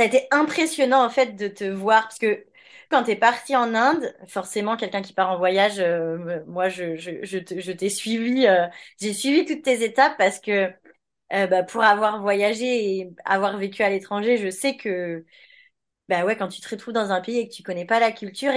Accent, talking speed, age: French, 225 wpm, 20-39